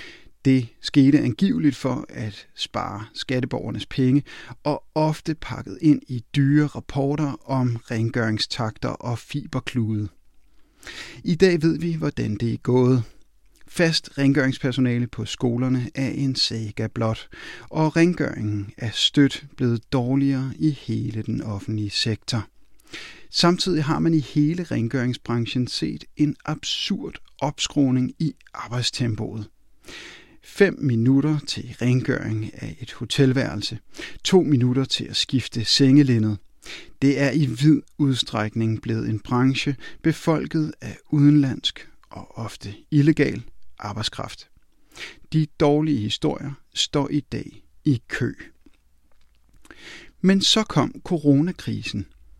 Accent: native